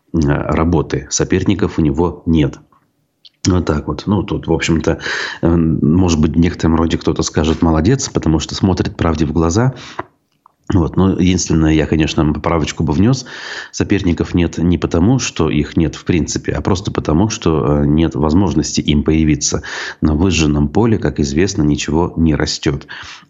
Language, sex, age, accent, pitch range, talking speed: Russian, male, 30-49, native, 80-95 Hz, 155 wpm